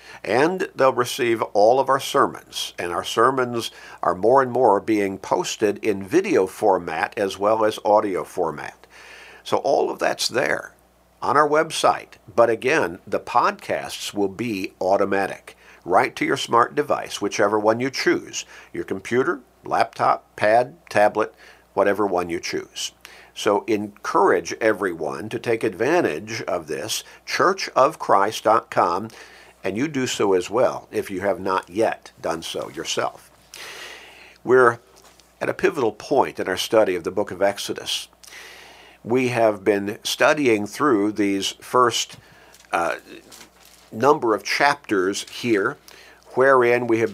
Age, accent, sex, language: 50-69, American, male, English